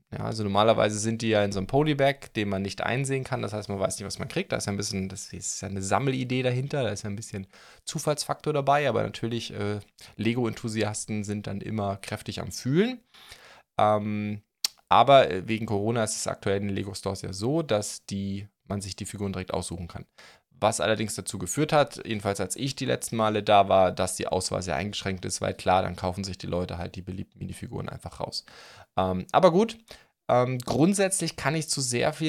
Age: 20-39